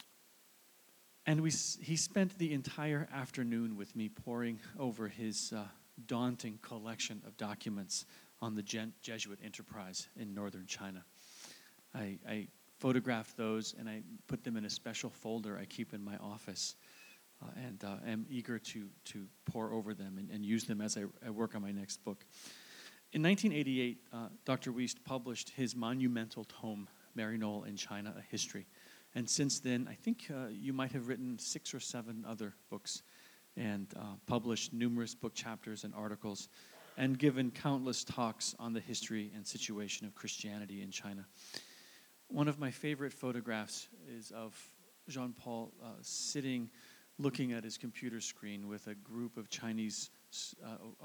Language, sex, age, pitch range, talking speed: English, male, 40-59, 105-125 Hz, 160 wpm